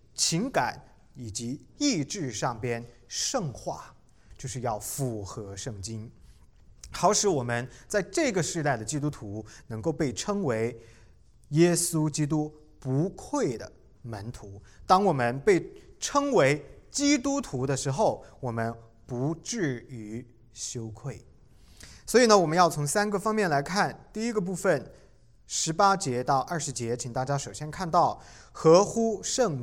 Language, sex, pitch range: Chinese, male, 120-185 Hz